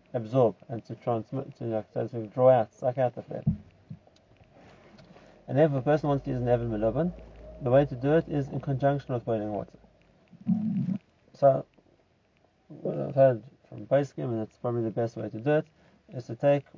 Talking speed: 190 wpm